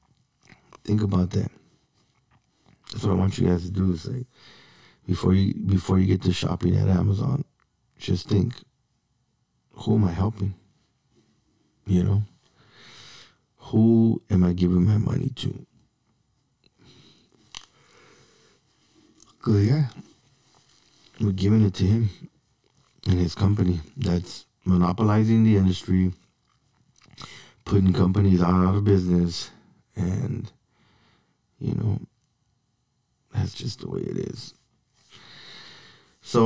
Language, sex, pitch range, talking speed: English, male, 90-115 Hz, 105 wpm